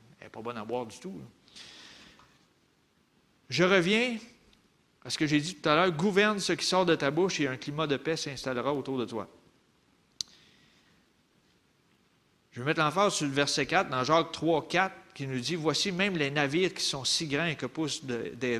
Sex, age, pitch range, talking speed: male, 40-59, 115-150 Hz, 205 wpm